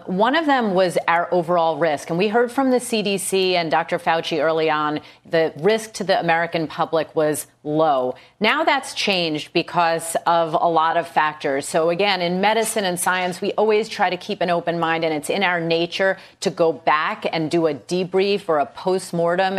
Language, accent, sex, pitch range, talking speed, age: English, American, female, 160-195 Hz, 195 wpm, 30-49